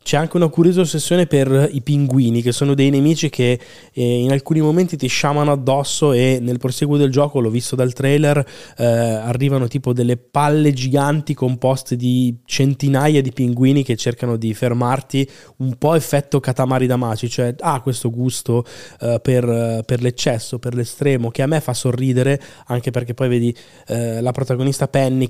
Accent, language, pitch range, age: native, Italian, 125-145 Hz, 20-39